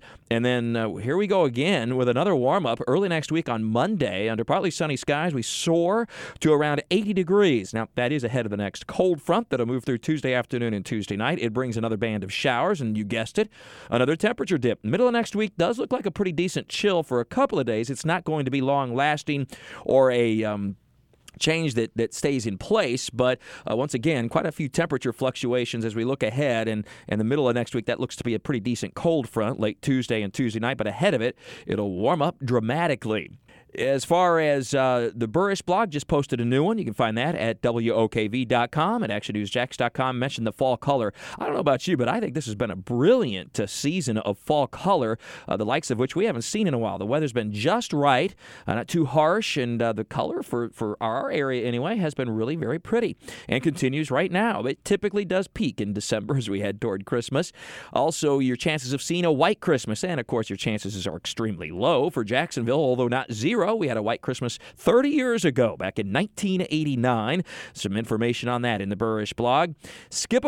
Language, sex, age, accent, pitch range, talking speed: English, male, 40-59, American, 115-160 Hz, 220 wpm